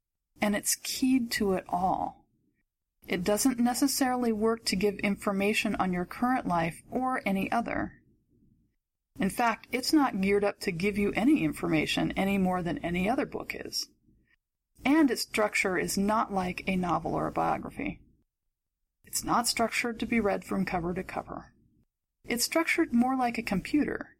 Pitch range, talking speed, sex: 190-245 Hz, 160 wpm, female